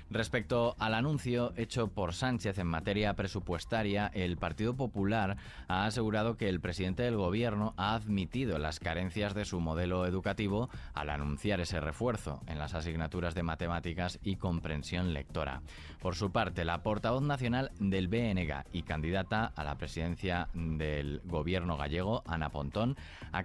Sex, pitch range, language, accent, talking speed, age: male, 85-105 Hz, Spanish, Spanish, 150 wpm, 20-39